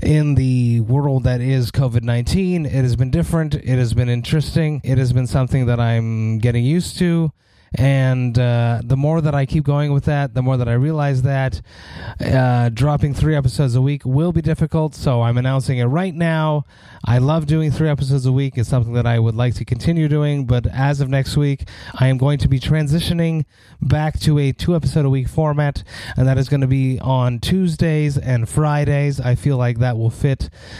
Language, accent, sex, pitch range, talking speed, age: English, American, male, 120-145 Hz, 205 wpm, 30-49